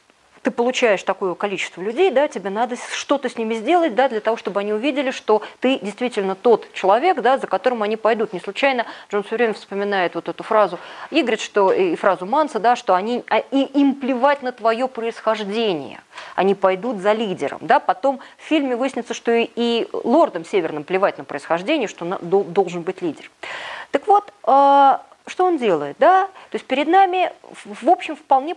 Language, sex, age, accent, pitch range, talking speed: Russian, female, 20-39, native, 195-265 Hz, 175 wpm